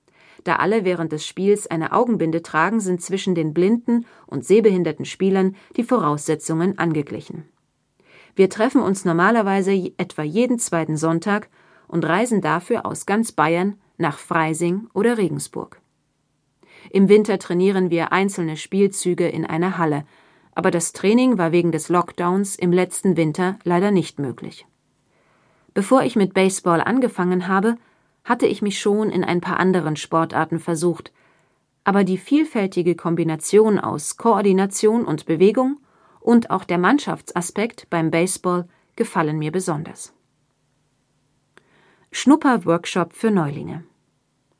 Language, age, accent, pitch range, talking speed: German, 40-59, German, 165-200 Hz, 125 wpm